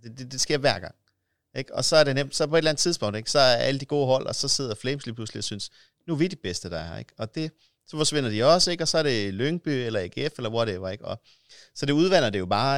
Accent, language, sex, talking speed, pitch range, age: native, Danish, male, 300 wpm, 105-150 Hz, 30-49